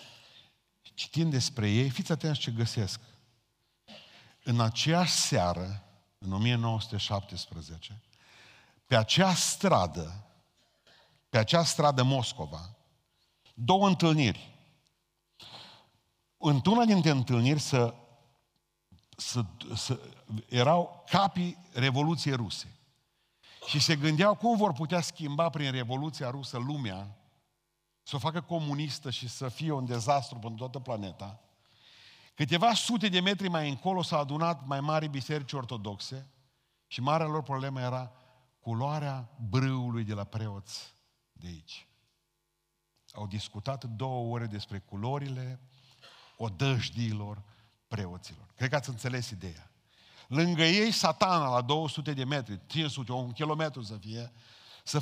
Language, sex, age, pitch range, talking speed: Romanian, male, 50-69, 115-155 Hz, 115 wpm